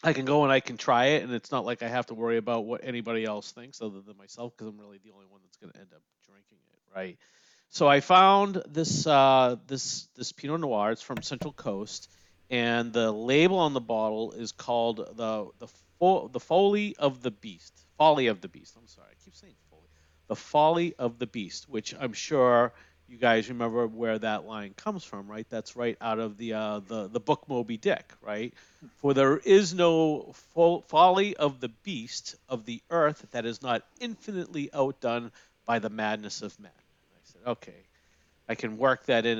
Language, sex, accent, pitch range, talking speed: English, male, American, 110-150 Hz, 205 wpm